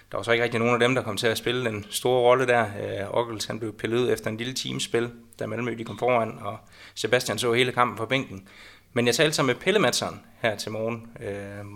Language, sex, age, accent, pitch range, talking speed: Danish, male, 20-39, native, 110-125 Hz, 240 wpm